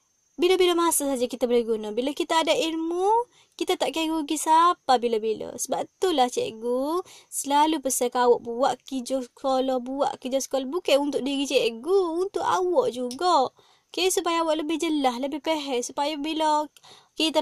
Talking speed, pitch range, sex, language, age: 150 wpm, 265-335 Hz, female, English, 20-39